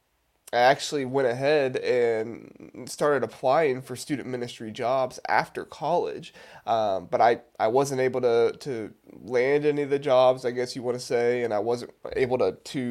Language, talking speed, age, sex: English, 175 wpm, 20-39, male